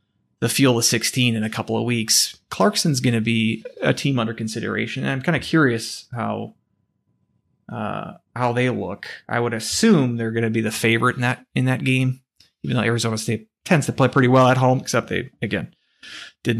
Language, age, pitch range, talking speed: English, 20-39, 115-135 Hz, 205 wpm